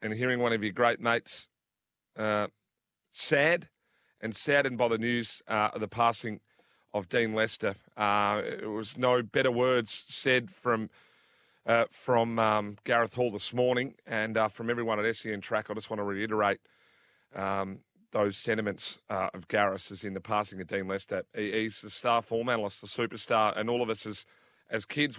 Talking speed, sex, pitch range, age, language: 180 wpm, male, 105-125 Hz, 30-49, English